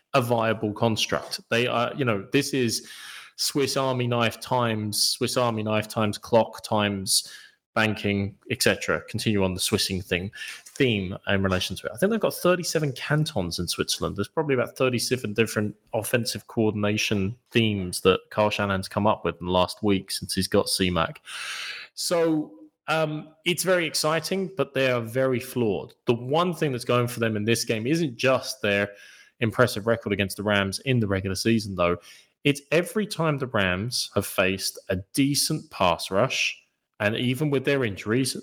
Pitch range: 105-140 Hz